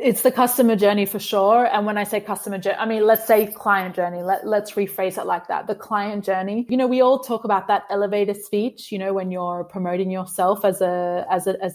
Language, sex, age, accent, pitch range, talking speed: English, female, 20-39, Australian, 190-220 Hz, 225 wpm